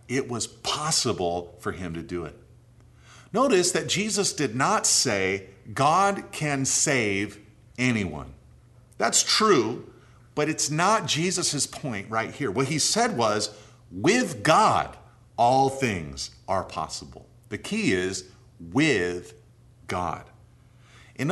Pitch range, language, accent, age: 105-135 Hz, English, American, 40-59